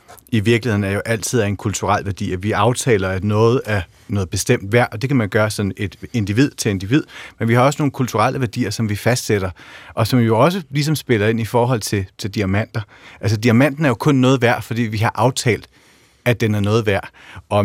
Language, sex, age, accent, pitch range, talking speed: Danish, male, 30-49, native, 105-130 Hz, 225 wpm